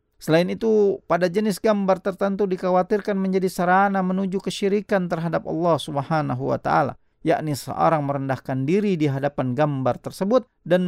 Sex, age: male, 40-59